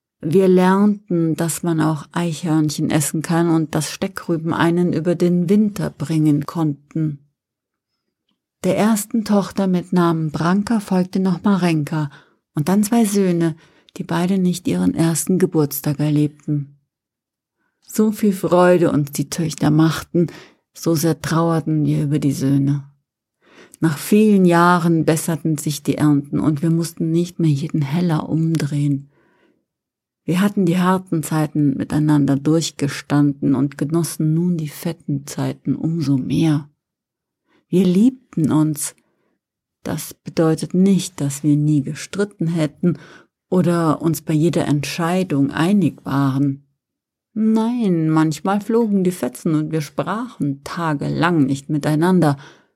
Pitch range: 150-180 Hz